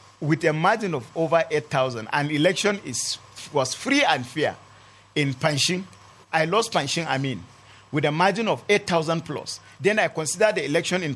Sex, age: male, 40-59